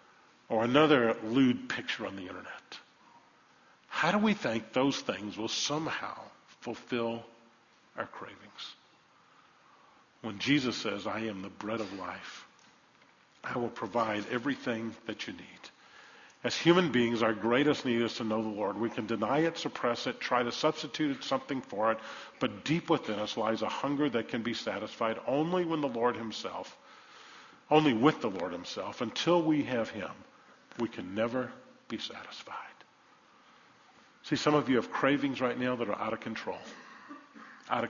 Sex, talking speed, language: male, 160 wpm, English